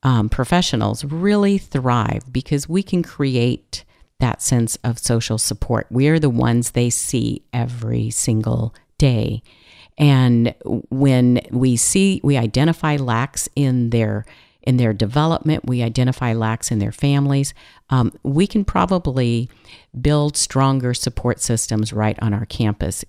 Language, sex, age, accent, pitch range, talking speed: English, female, 50-69, American, 115-145 Hz, 135 wpm